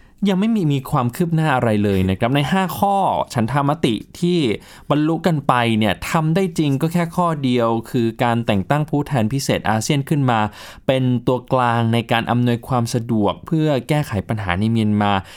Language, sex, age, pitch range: Thai, male, 20-39, 110-155 Hz